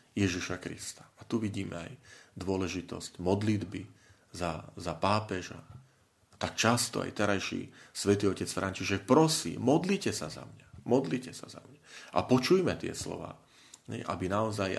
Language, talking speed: Slovak, 135 wpm